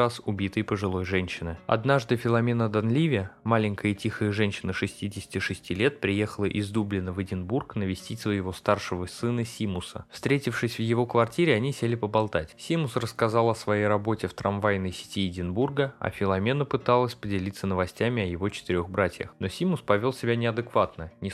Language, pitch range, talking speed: Russian, 95-120 Hz, 150 wpm